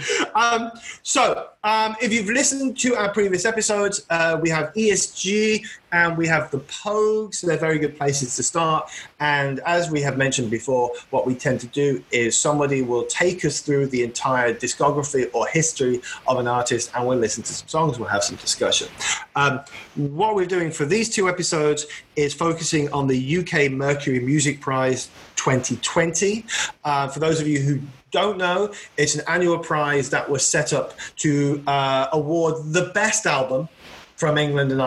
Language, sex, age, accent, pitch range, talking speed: English, male, 30-49, British, 130-170 Hz, 175 wpm